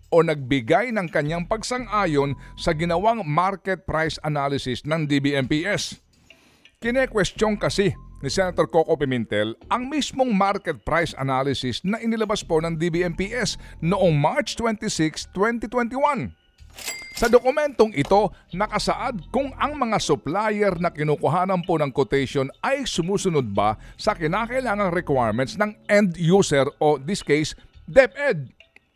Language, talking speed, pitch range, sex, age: Filipino, 120 wpm, 135-205 Hz, male, 50-69